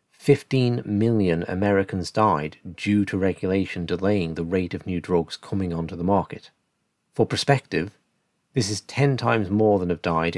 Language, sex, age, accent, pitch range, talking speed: English, male, 40-59, British, 90-110 Hz, 155 wpm